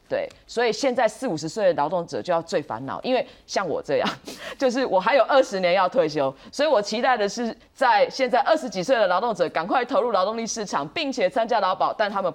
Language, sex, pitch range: Chinese, female, 175-285 Hz